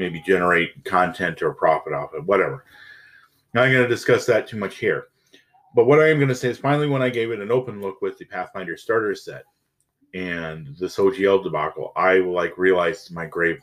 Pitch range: 90-140 Hz